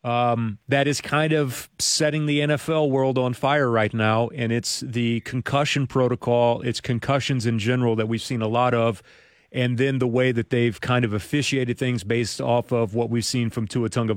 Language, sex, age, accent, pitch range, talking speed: English, male, 40-59, American, 115-140 Hz, 200 wpm